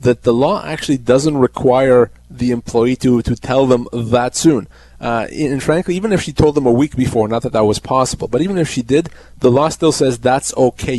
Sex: male